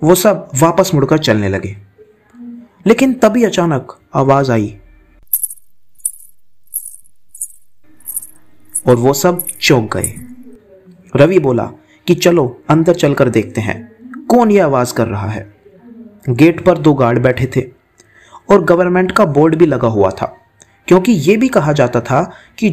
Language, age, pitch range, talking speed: Hindi, 30-49, 120-195 Hz, 135 wpm